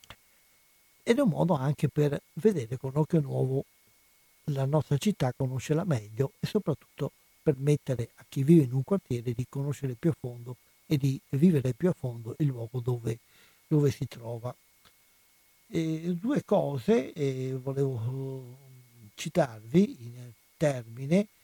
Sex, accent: male, native